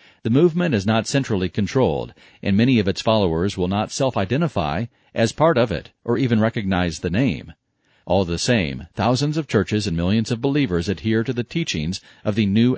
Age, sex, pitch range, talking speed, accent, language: 40-59, male, 100-125 Hz, 190 wpm, American, English